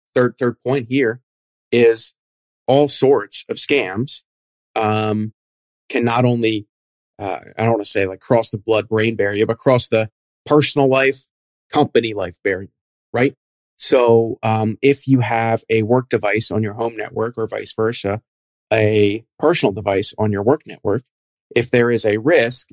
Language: English